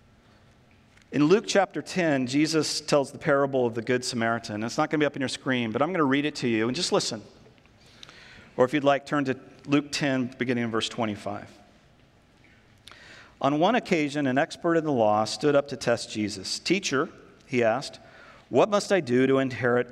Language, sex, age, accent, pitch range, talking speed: English, male, 50-69, American, 115-160 Hz, 200 wpm